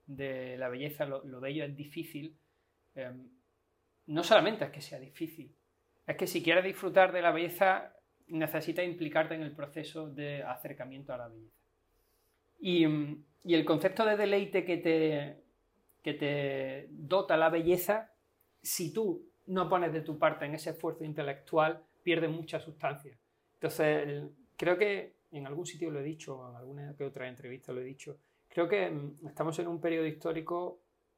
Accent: Spanish